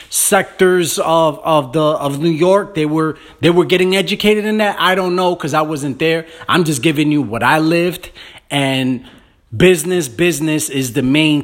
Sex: male